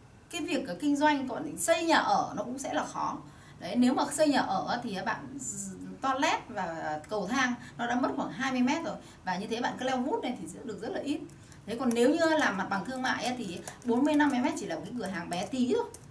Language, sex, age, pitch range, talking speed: Vietnamese, female, 20-39, 200-280 Hz, 245 wpm